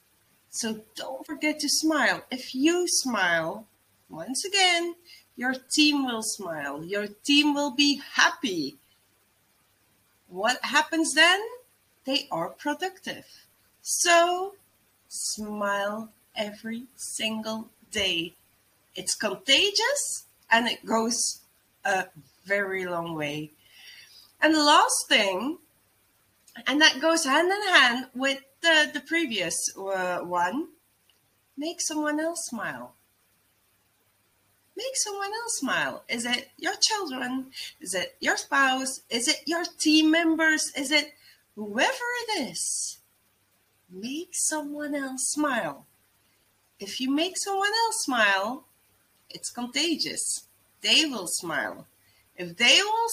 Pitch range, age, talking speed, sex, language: 195-320 Hz, 30-49, 110 wpm, female, English